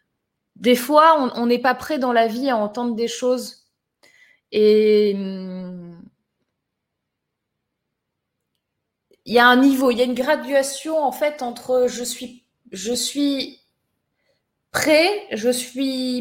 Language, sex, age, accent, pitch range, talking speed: French, female, 20-39, French, 230-285 Hz, 135 wpm